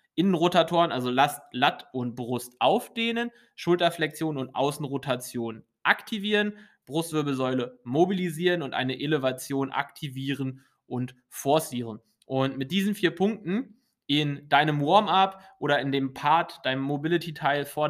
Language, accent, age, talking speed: English, German, 20-39, 110 wpm